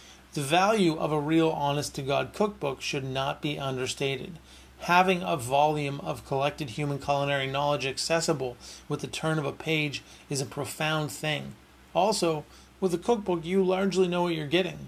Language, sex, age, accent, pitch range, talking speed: English, male, 40-59, American, 130-155 Hz, 160 wpm